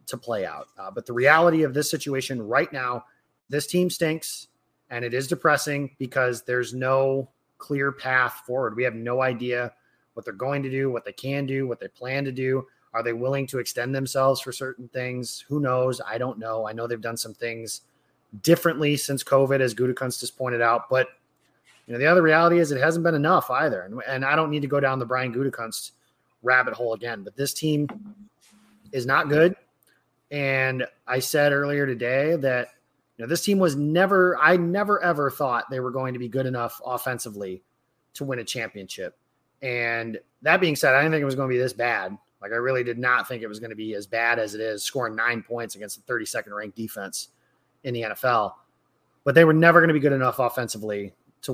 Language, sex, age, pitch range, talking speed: English, male, 30-49, 120-145 Hz, 215 wpm